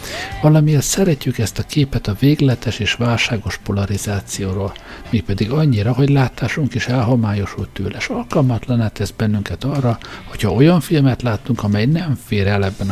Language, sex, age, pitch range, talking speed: Hungarian, male, 60-79, 100-130 Hz, 145 wpm